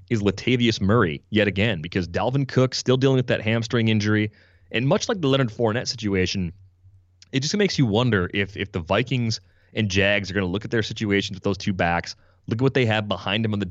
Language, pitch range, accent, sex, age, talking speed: English, 90-110 Hz, American, male, 30-49, 230 wpm